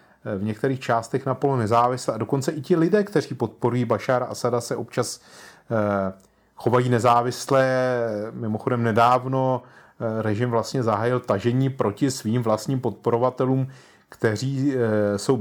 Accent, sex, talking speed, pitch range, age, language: native, male, 120 wpm, 115-140 Hz, 30-49, Czech